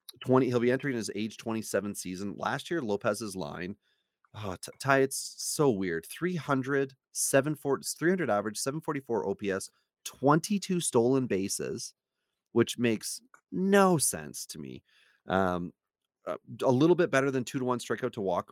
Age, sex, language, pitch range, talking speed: 30-49, male, English, 100-130 Hz, 140 wpm